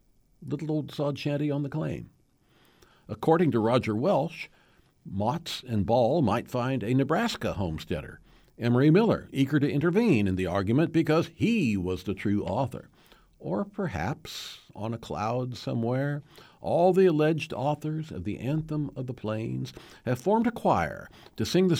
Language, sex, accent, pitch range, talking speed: English, male, American, 100-150 Hz, 155 wpm